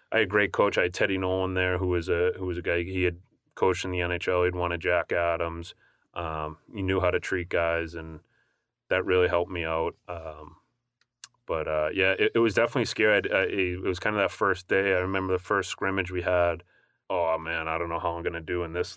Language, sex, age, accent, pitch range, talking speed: English, male, 30-49, American, 85-90 Hz, 245 wpm